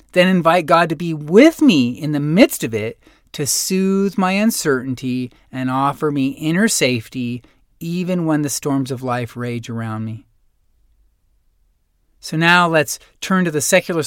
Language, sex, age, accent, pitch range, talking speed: English, male, 40-59, American, 135-190 Hz, 160 wpm